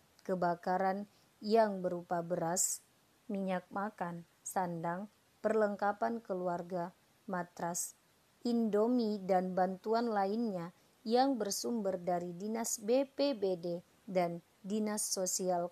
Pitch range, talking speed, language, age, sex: 185-230 Hz, 85 wpm, Indonesian, 30-49, female